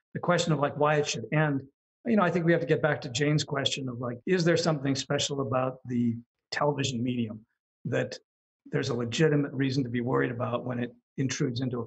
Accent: American